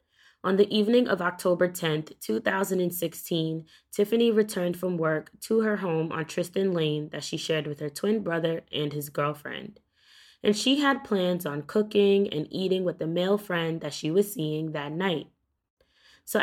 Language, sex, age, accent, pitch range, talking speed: English, female, 20-39, American, 155-205 Hz, 170 wpm